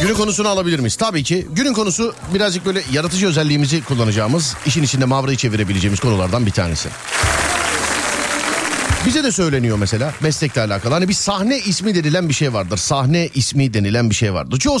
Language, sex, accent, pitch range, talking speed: Turkish, male, native, 115-190 Hz, 165 wpm